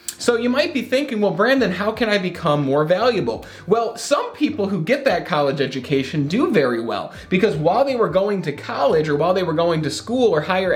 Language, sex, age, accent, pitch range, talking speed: English, male, 30-49, American, 145-220 Hz, 225 wpm